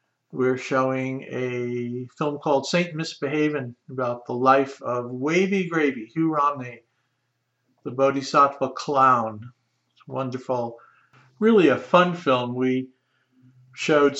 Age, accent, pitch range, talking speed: 50-69, American, 125-145 Hz, 110 wpm